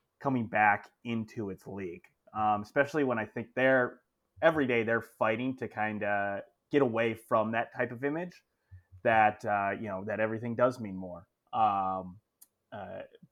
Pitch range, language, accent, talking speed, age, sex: 105-130 Hz, English, American, 160 wpm, 30-49, male